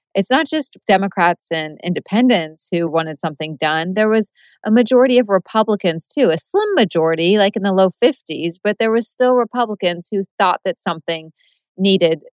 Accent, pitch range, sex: American, 165-215 Hz, female